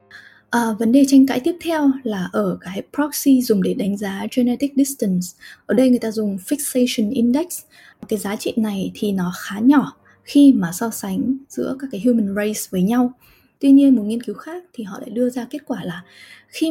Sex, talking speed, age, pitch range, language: female, 210 wpm, 20-39, 210-270 Hz, Vietnamese